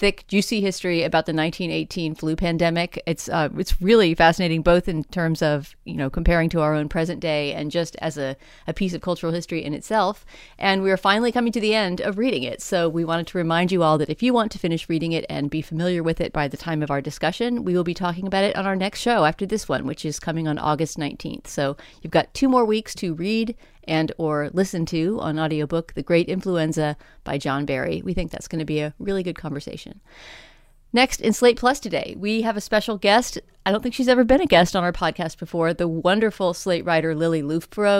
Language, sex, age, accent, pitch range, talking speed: English, female, 30-49, American, 160-195 Hz, 235 wpm